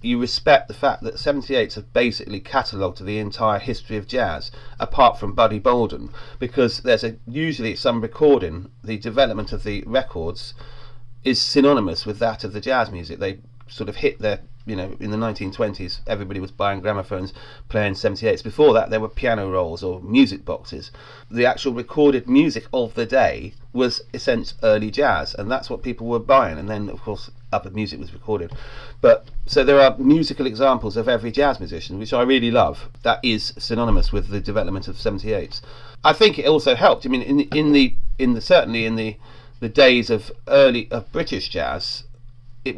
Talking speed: 190 wpm